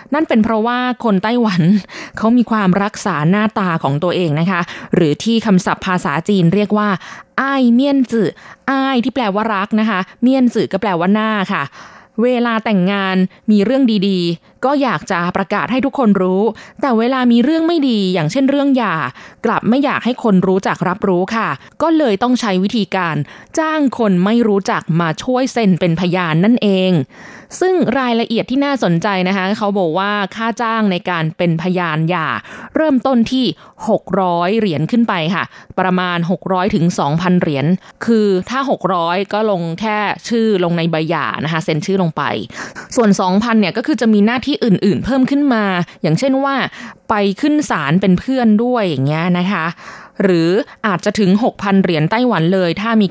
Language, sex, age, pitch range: Thai, female, 20-39, 180-235 Hz